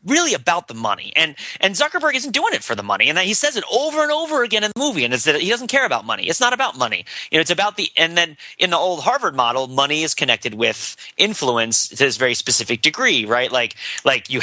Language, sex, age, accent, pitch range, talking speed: English, male, 30-49, American, 125-205 Hz, 260 wpm